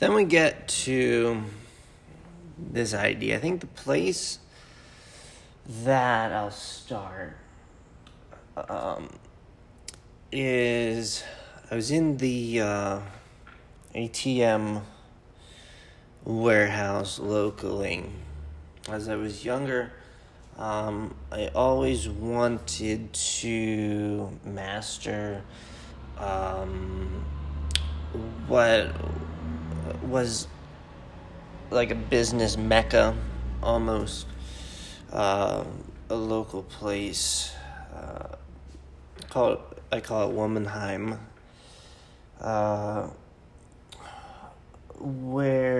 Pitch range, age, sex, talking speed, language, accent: 80-120 Hz, 30-49, male, 70 wpm, English, American